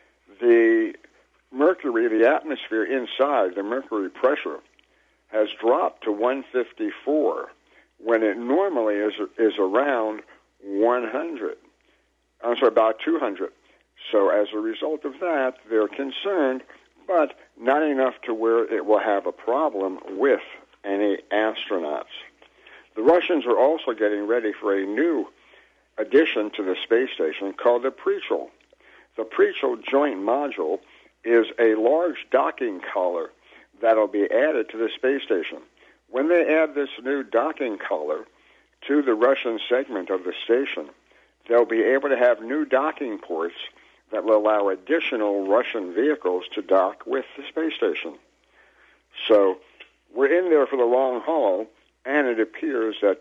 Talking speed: 145 wpm